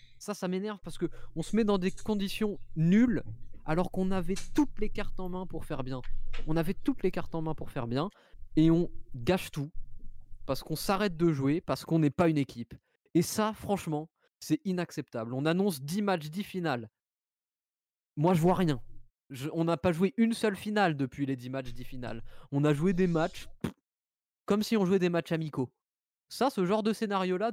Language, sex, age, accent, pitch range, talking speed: French, male, 20-39, French, 130-190 Hz, 205 wpm